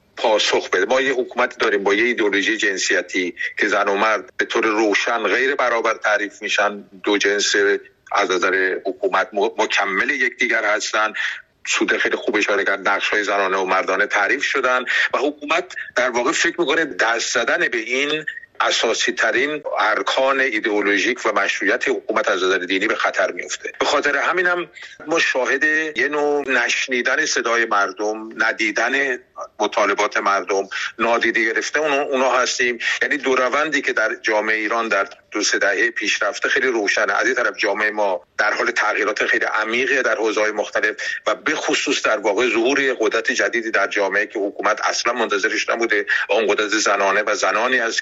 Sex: male